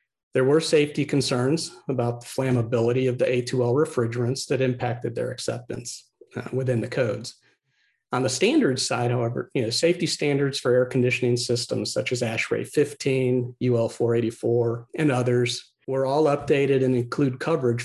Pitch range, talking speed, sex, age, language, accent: 120-140 Hz, 145 wpm, male, 50-69, English, American